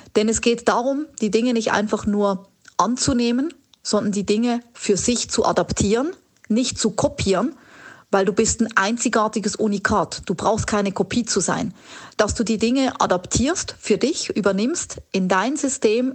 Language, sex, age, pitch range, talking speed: German, female, 40-59, 195-235 Hz, 160 wpm